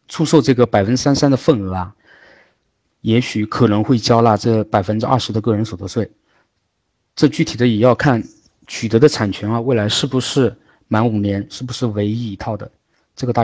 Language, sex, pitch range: Chinese, male, 105-130 Hz